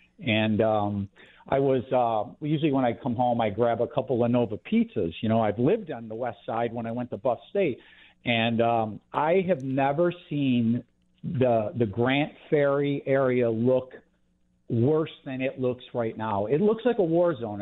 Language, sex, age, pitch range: English, male, 50-69, 115-155 Hz